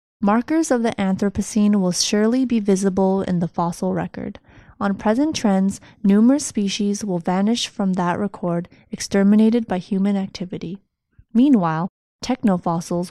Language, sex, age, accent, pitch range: Chinese, female, 20-39, American, 180-220 Hz